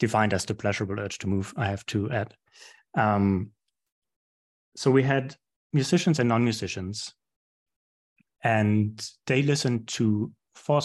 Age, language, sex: 30-49, English, male